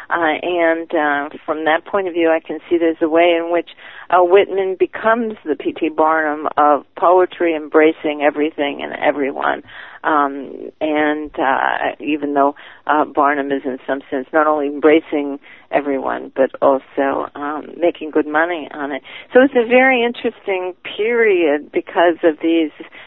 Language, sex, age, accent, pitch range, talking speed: English, female, 40-59, American, 150-185 Hz, 160 wpm